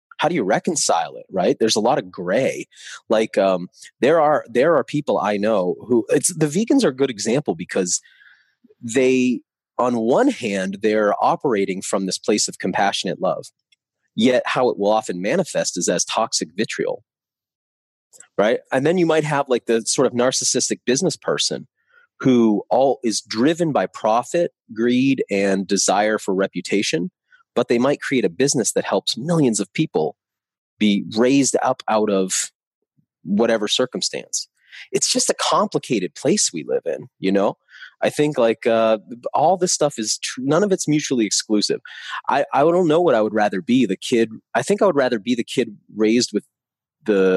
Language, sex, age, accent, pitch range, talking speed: English, male, 30-49, American, 100-150 Hz, 175 wpm